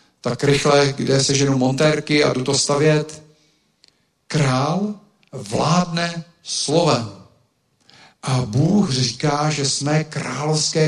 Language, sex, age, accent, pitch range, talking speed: Czech, male, 50-69, native, 130-160 Hz, 105 wpm